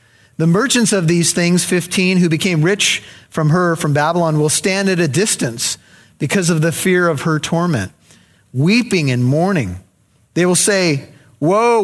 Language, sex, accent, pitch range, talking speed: English, male, American, 155-205 Hz, 160 wpm